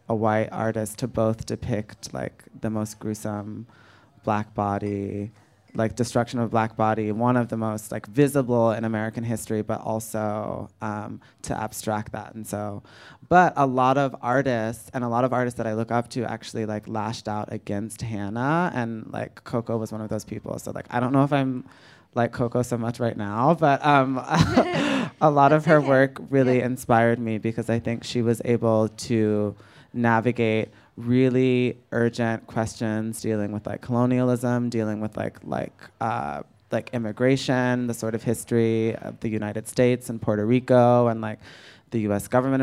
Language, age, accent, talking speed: English, 20-39, American, 175 wpm